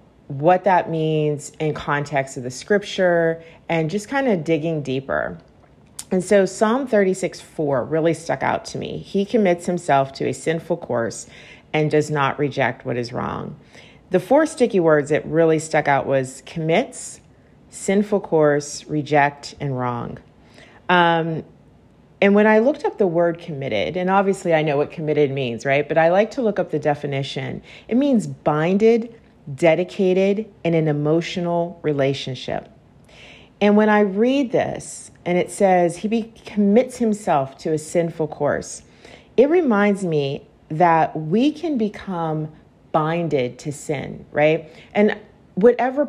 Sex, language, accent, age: female, English, American, 40-59